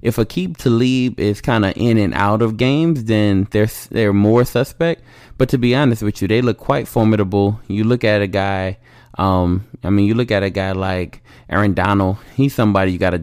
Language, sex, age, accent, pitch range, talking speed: English, male, 20-39, American, 100-125 Hz, 220 wpm